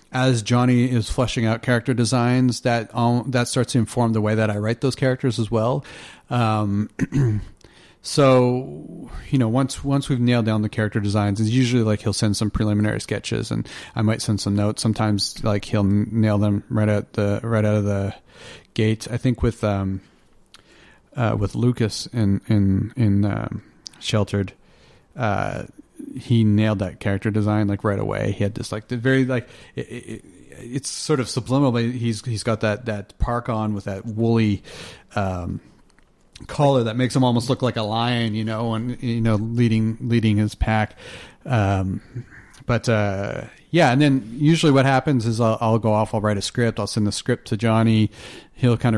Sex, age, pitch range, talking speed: male, 40-59, 105-120 Hz, 185 wpm